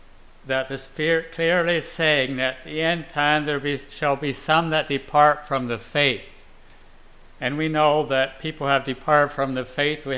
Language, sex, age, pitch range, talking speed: English, male, 60-79, 135-165 Hz, 190 wpm